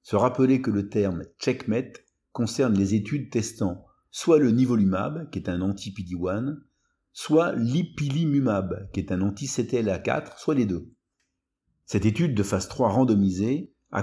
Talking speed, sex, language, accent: 140 wpm, male, French, French